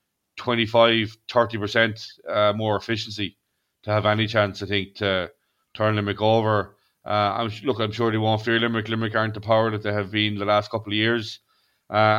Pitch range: 105-120 Hz